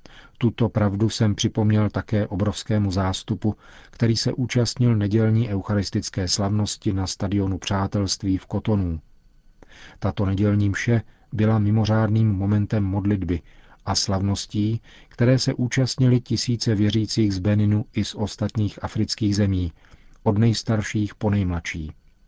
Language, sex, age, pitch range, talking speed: Czech, male, 40-59, 100-115 Hz, 115 wpm